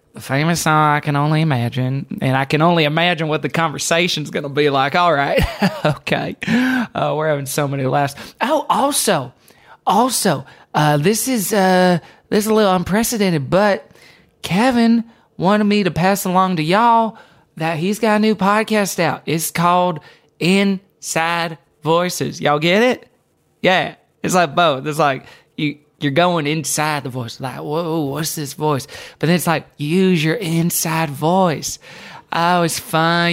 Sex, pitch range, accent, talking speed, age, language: male, 155-205 Hz, American, 160 wpm, 20-39, English